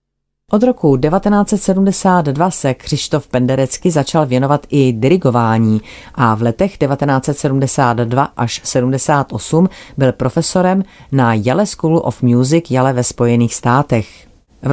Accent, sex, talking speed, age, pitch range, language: native, female, 115 wpm, 30-49, 125-155 Hz, Czech